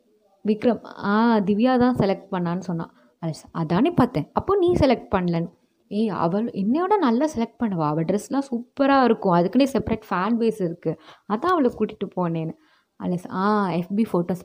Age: 20-39